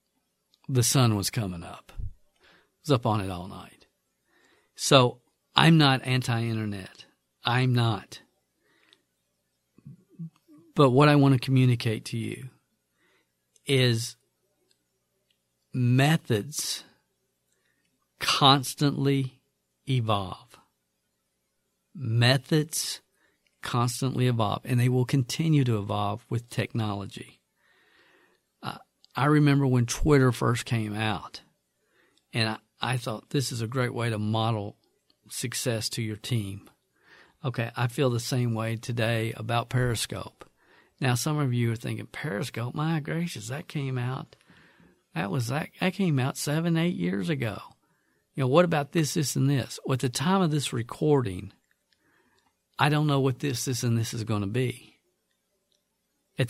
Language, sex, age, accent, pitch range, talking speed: English, male, 50-69, American, 110-140 Hz, 130 wpm